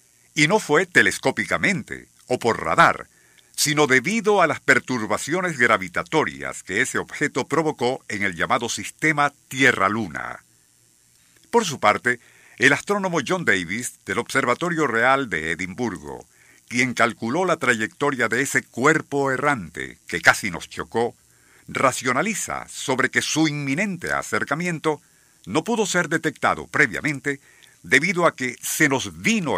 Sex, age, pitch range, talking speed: male, 50-69, 110-155 Hz, 130 wpm